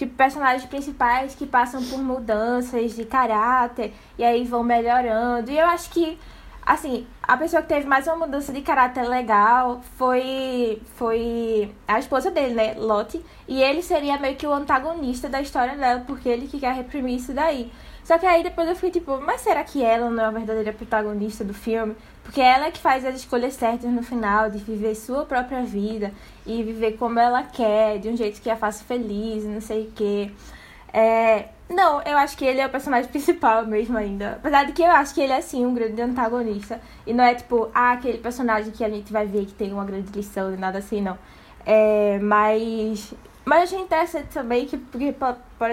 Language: Portuguese